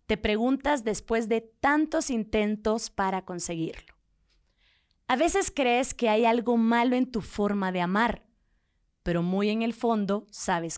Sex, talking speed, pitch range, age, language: female, 145 wpm, 200-255 Hz, 20-39, Spanish